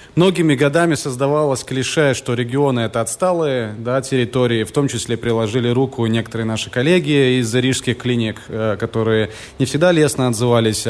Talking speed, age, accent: 150 wpm, 20-39, native